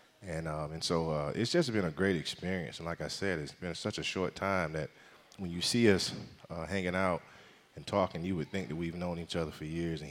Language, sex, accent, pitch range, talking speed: English, male, American, 80-95 Hz, 250 wpm